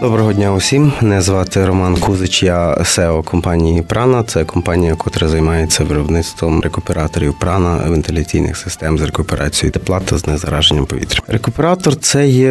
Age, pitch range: 30-49, 80-100 Hz